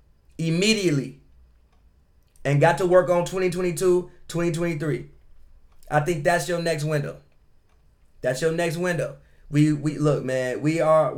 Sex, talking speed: male, 130 wpm